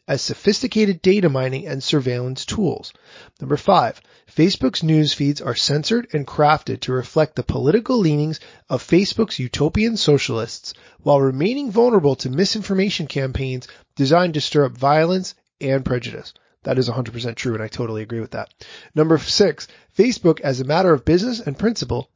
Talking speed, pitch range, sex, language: 155 wpm, 130-185 Hz, male, English